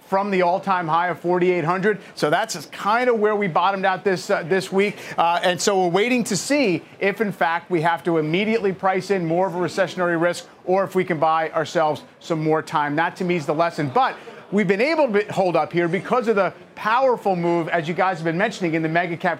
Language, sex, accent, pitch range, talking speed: English, male, American, 170-210 Hz, 240 wpm